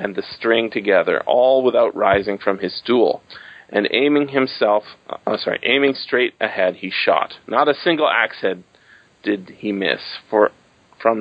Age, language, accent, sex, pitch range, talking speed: 40-59, English, American, male, 110-140 Hz, 165 wpm